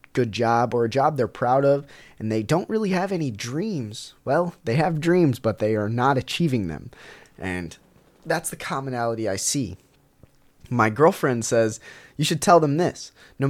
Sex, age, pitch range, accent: male, 20-39, 120-160 Hz, American